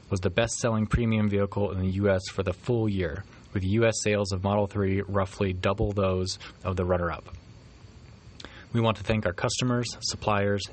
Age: 20-39